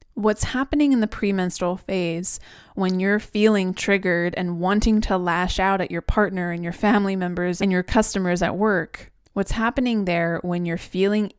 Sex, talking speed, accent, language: female, 175 wpm, American, English